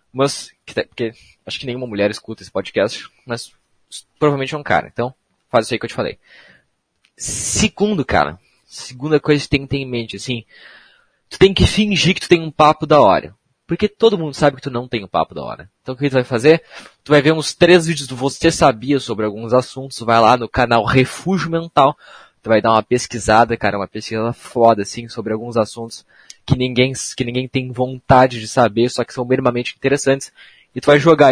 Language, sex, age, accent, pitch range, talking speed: Portuguese, male, 20-39, Brazilian, 110-140 Hz, 215 wpm